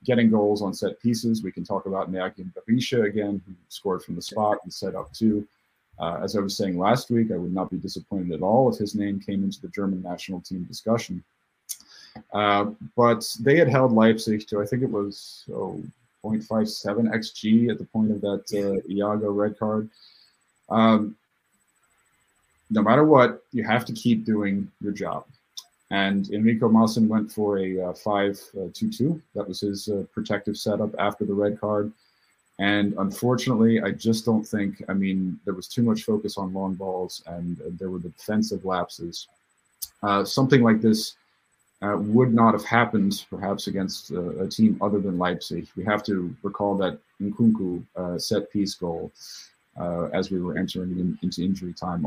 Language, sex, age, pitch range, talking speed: English, male, 30-49, 95-110 Hz, 185 wpm